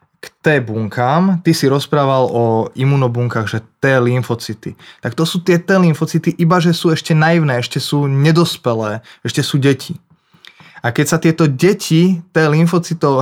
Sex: male